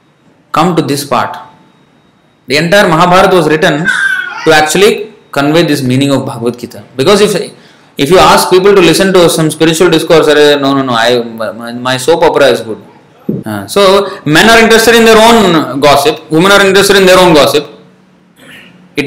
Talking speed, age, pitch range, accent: 170 wpm, 20-39, 135-205 Hz, Indian